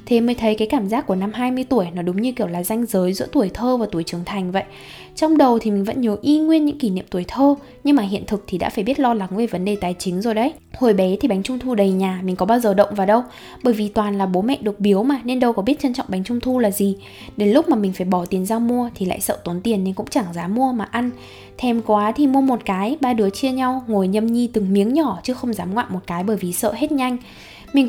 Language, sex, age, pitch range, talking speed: Vietnamese, female, 10-29, 195-255 Hz, 300 wpm